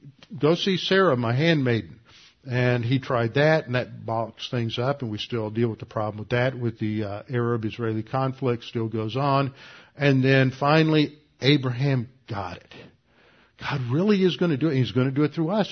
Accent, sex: American, male